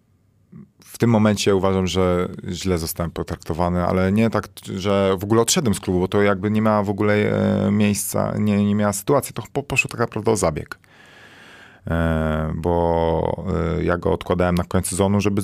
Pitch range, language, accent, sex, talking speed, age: 80-100 Hz, Polish, native, male, 165 wpm, 30-49